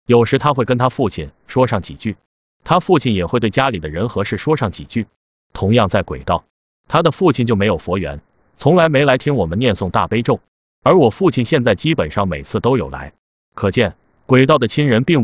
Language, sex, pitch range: Chinese, male, 95-130 Hz